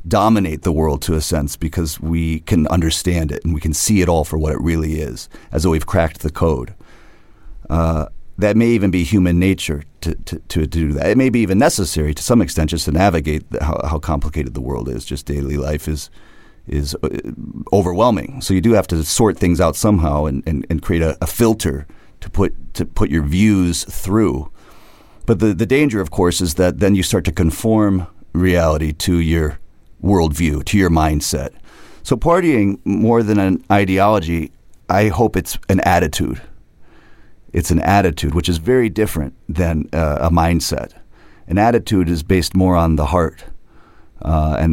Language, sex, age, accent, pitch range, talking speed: English, male, 40-59, American, 75-100 Hz, 185 wpm